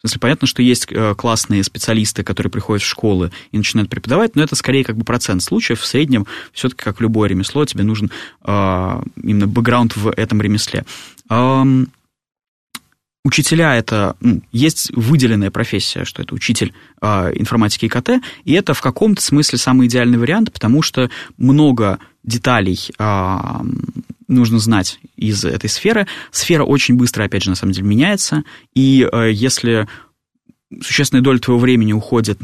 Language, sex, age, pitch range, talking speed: Russian, male, 20-39, 105-130 Hz, 140 wpm